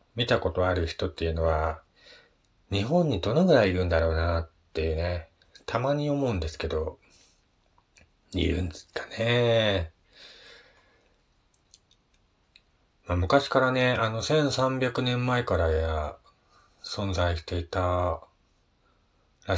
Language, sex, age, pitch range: Japanese, male, 40-59, 85-115 Hz